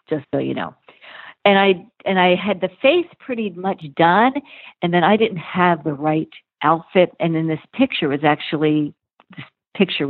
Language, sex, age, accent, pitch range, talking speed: English, female, 50-69, American, 150-185 Hz, 180 wpm